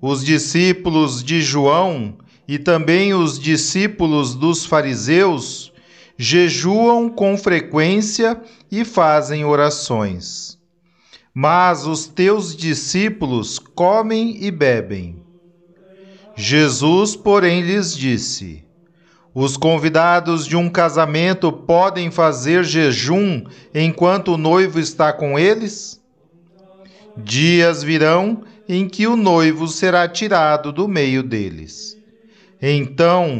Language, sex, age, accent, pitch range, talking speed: Portuguese, male, 40-59, Brazilian, 150-195 Hz, 95 wpm